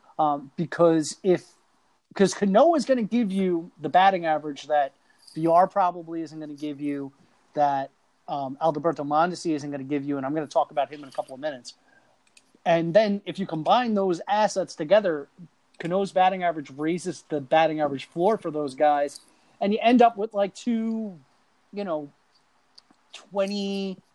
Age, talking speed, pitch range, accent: 30-49, 175 wpm, 155-185 Hz, American